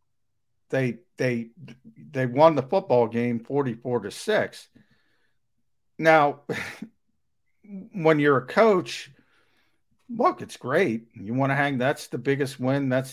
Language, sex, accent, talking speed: English, male, American, 130 wpm